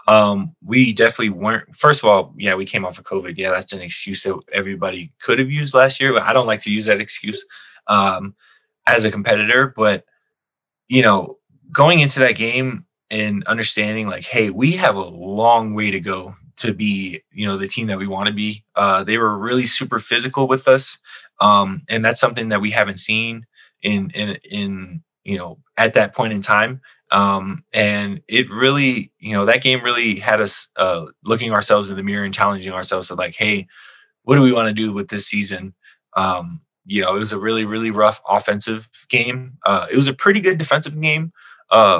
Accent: American